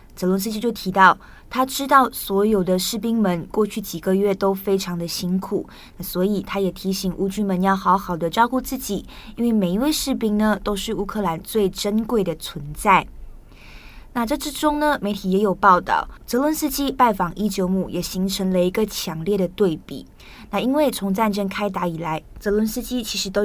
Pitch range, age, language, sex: 185-220 Hz, 20-39, Chinese, female